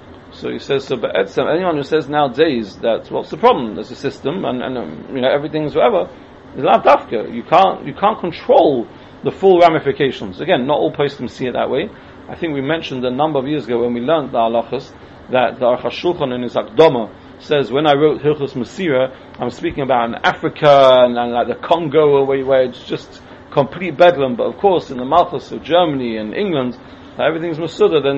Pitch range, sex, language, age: 130-160 Hz, male, English, 40-59